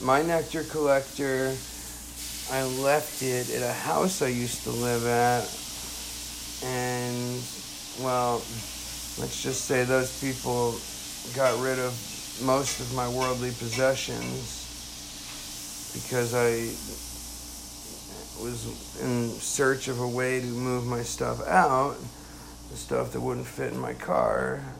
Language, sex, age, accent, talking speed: English, male, 50-69, American, 120 wpm